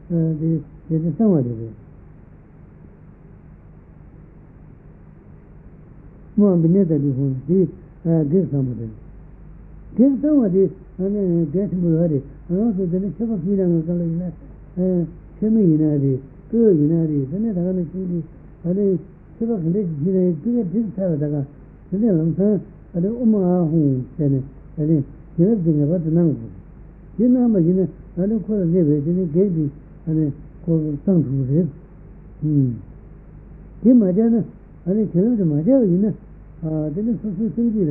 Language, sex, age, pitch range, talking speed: Italian, male, 60-79, 155-195 Hz, 110 wpm